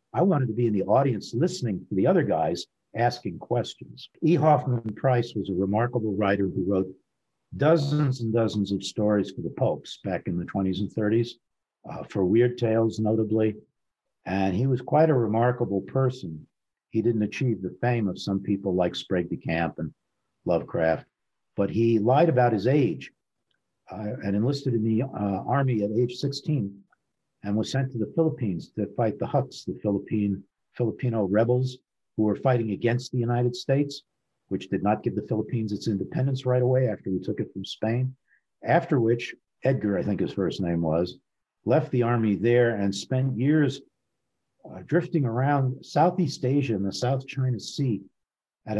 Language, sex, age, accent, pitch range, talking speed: English, male, 50-69, American, 100-130 Hz, 175 wpm